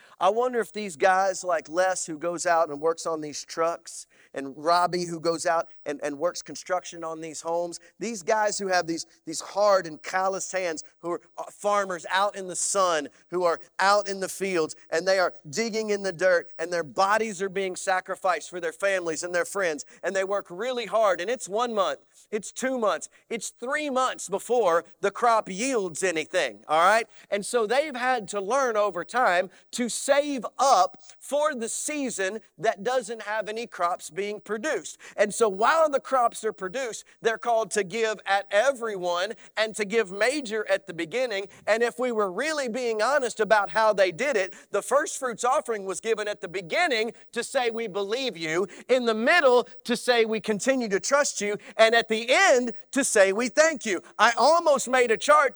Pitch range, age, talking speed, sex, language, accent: 180-235 Hz, 40-59, 195 wpm, male, English, American